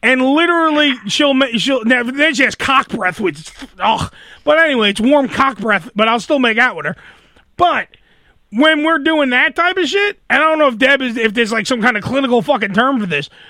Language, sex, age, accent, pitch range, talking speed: English, male, 30-49, American, 230-295 Hz, 230 wpm